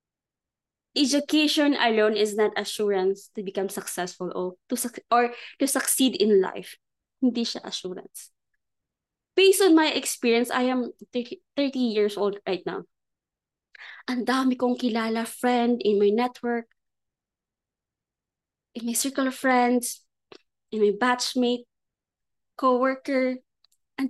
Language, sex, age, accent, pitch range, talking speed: Filipino, female, 20-39, native, 235-295 Hz, 120 wpm